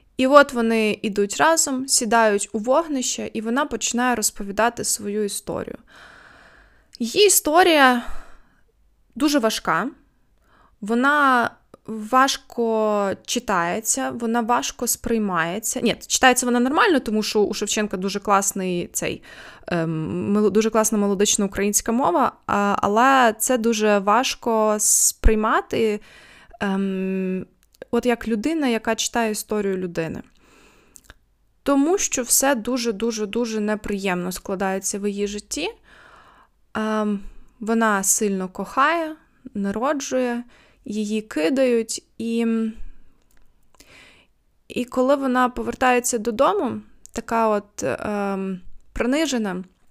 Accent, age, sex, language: native, 20-39, female, Ukrainian